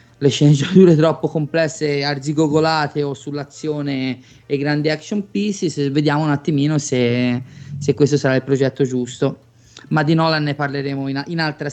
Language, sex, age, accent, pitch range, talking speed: Italian, male, 20-39, native, 135-170 Hz, 155 wpm